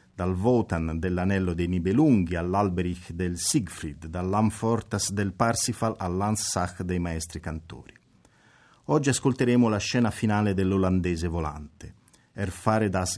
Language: Italian